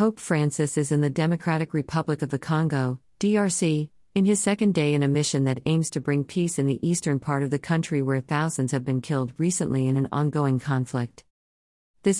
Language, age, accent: English, 40-59, American